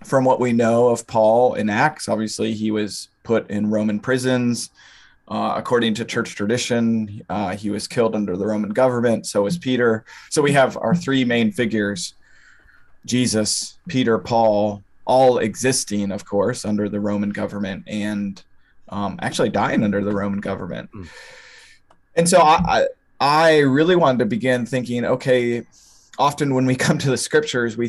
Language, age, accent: English, 20-39, American